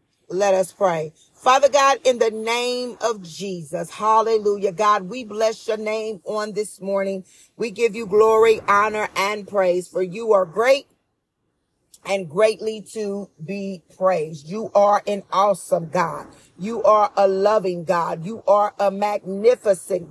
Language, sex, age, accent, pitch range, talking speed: English, female, 40-59, American, 200-245 Hz, 145 wpm